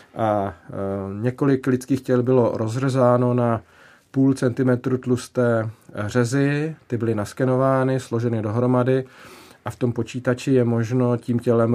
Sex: male